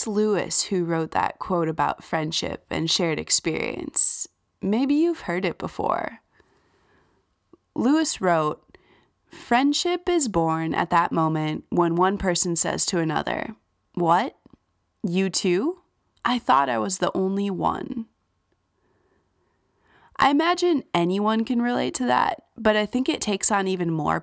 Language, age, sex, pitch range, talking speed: English, 20-39, female, 170-240 Hz, 135 wpm